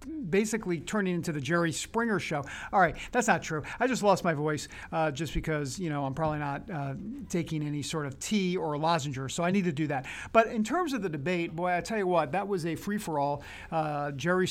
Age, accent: 50-69, American